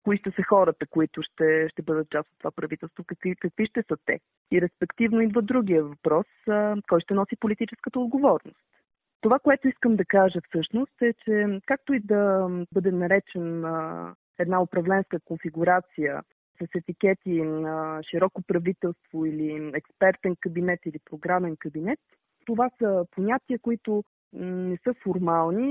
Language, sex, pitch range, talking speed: Bulgarian, female, 175-235 Hz, 140 wpm